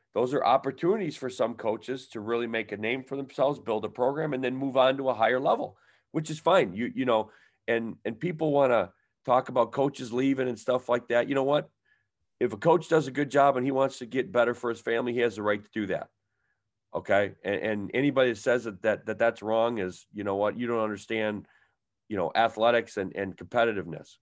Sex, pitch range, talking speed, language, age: male, 105-130 Hz, 230 wpm, English, 40-59